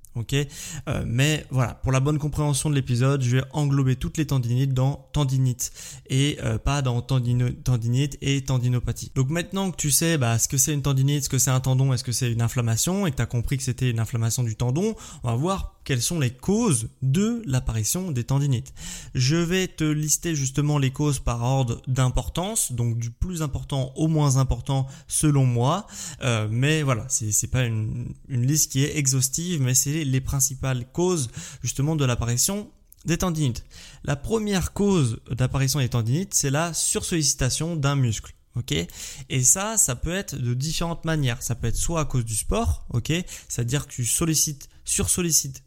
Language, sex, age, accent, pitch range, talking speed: French, male, 20-39, French, 125-155 Hz, 185 wpm